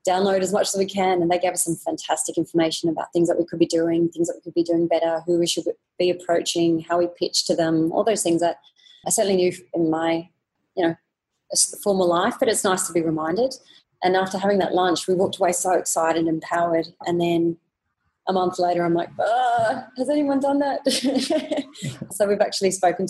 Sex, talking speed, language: female, 215 wpm, English